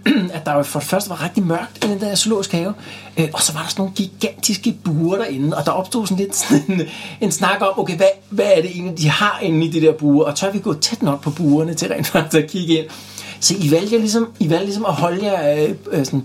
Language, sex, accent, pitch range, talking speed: Danish, male, native, 140-180 Hz, 255 wpm